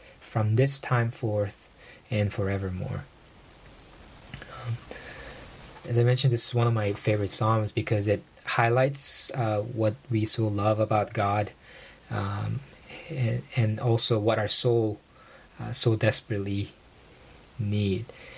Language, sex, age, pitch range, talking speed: English, male, 20-39, 105-125 Hz, 125 wpm